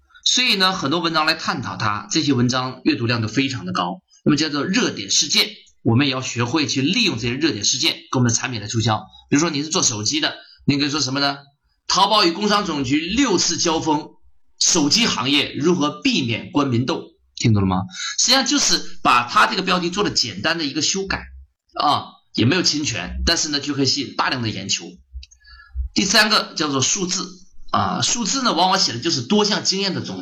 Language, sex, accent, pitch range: Chinese, male, native, 110-170 Hz